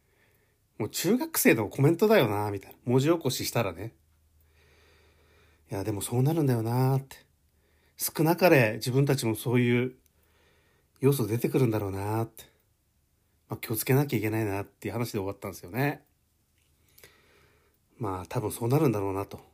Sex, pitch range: male, 95-130 Hz